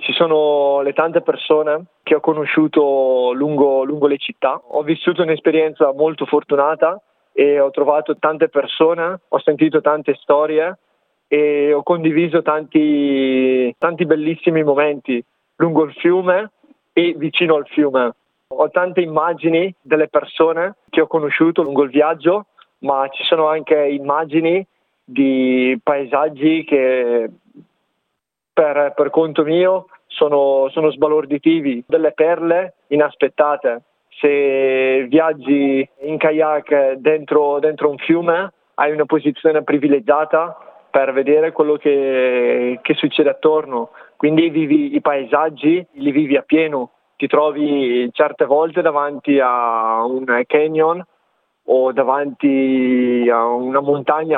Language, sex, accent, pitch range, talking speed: Italian, male, native, 140-160 Hz, 120 wpm